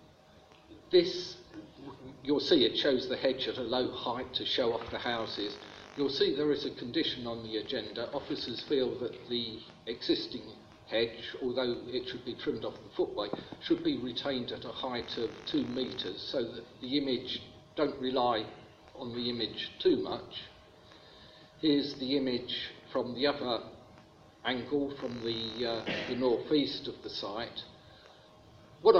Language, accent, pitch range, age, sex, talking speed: English, British, 115-135 Hz, 50-69, male, 155 wpm